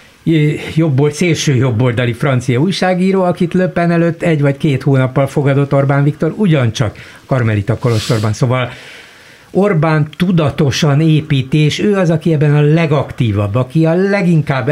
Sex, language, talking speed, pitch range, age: male, Hungarian, 120 wpm, 115-155 Hz, 60-79